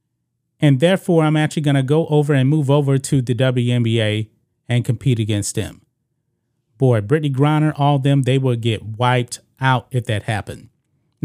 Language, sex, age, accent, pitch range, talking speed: English, male, 30-49, American, 125-150 Hz, 170 wpm